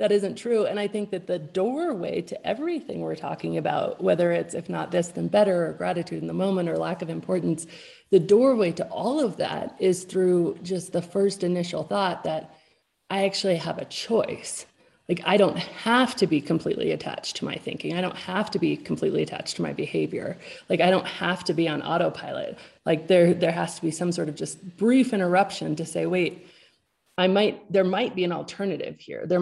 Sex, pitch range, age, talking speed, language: female, 170-210 Hz, 30-49, 210 wpm, English